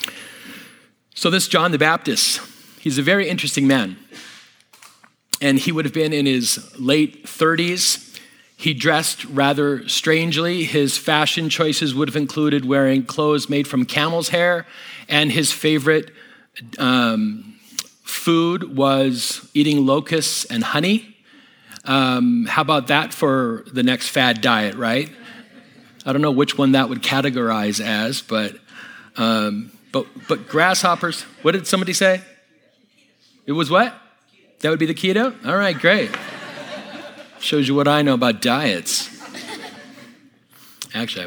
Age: 40-59